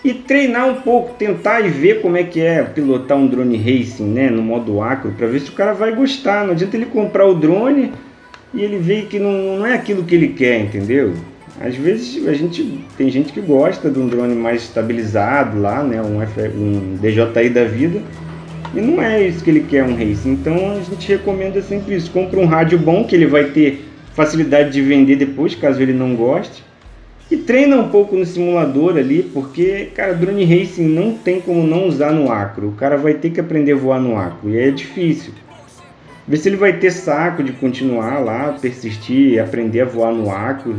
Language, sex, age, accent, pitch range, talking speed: Portuguese, male, 30-49, Brazilian, 125-190 Hz, 205 wpm